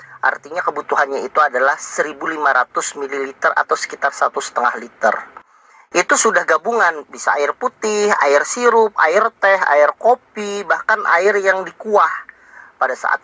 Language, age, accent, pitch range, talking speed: Indonesian, 40-59, native, 150-210 Hz, 125 wpm